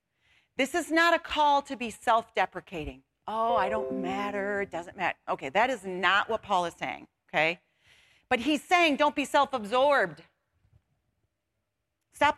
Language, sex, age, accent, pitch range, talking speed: English, female, 40-59, American, 180-260 Hz, 150 wpm